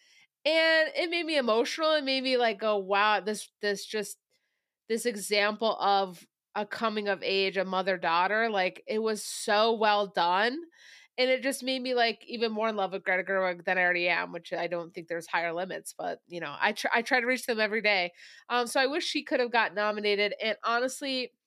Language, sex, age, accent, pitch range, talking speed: English, female, 20-39, American, 185-240 Hz, 220 wpm